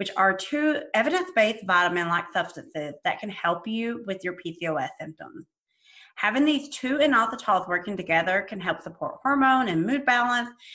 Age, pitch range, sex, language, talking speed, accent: 30-49, 185-250 Hz, female, English, 150 wpm, American